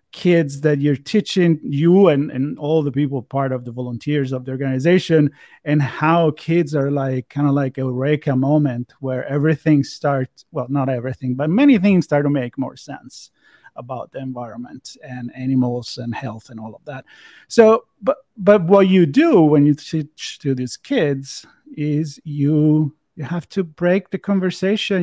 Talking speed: 175 wpm